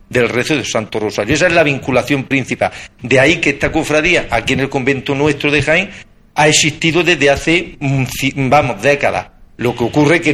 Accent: Spanish